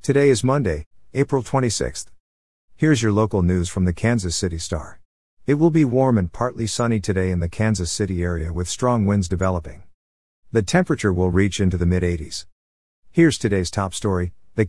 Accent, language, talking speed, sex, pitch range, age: American, English, 175 wpm, male, 90-115 Hz, 50-69